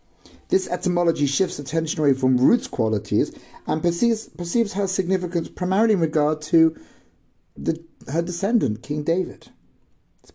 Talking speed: 135 wpm